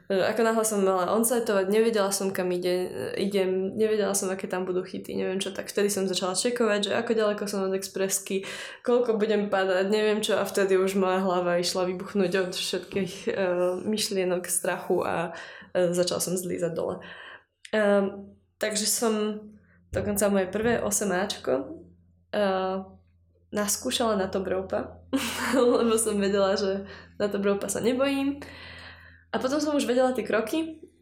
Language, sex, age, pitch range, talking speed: Slovak, female, 20-39, 185-215 Hz, 155 wpm